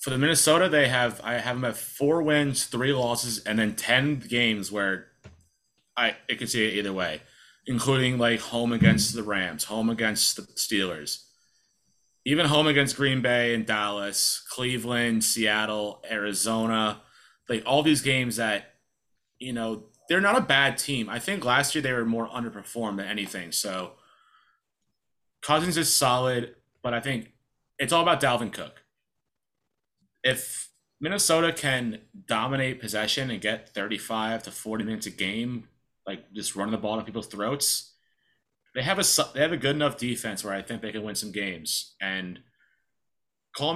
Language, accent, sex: English, American, male